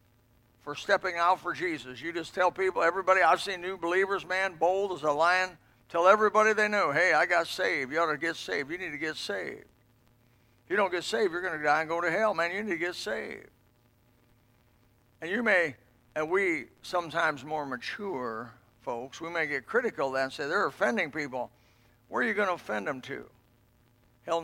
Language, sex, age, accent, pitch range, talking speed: English, male, 60-79, American, 120-175 Hz, 210 wpm